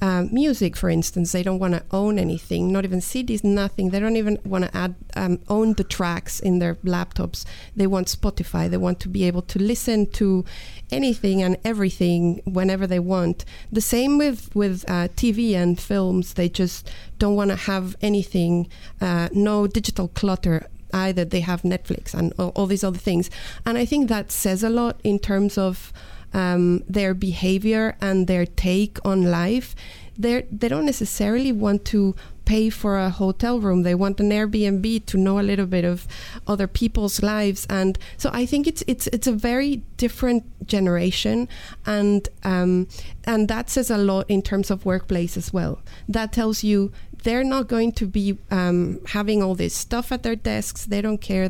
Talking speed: 180 wpm